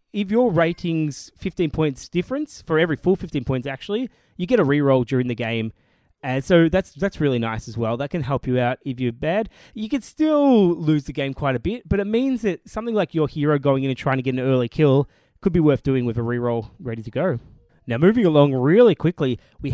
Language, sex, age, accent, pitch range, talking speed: English, male, 20-39, Australian, 125-175 Hz, 235 wpm